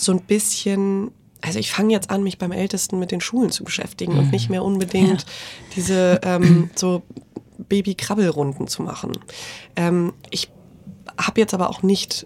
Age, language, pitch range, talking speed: 20-39, German, 170-190 Hz, 160 wpm